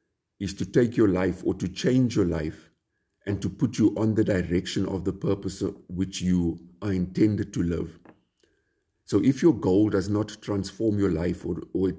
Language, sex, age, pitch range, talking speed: English, male, 50-69, 90-105 Hz, 190 wpm